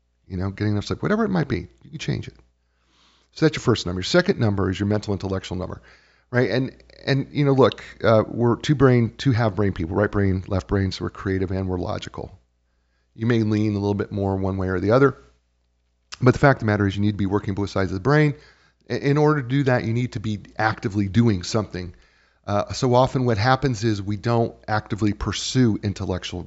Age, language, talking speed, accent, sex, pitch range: 40-59, English, 230 wpm, American, male, 90-120 Hz